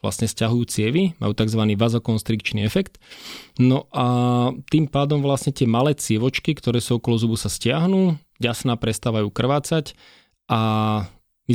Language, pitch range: Slovak, 110-145 Hz